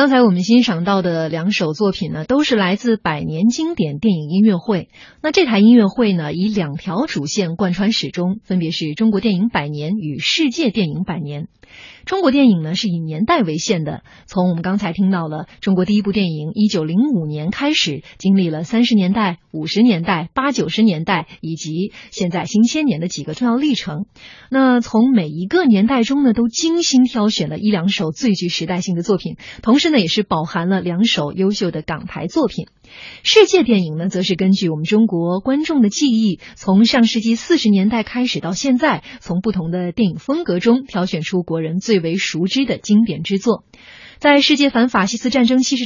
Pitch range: 175-235 Hz